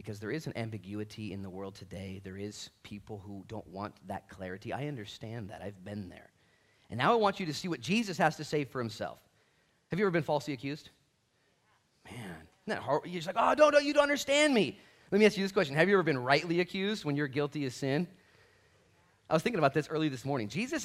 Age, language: 30-49, English